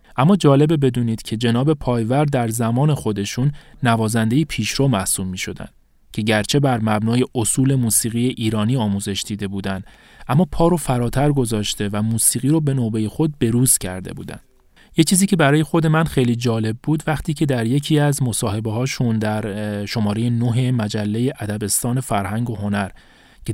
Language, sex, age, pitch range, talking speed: Persian, male, 30-49, 110-135 Hz, 155 wpm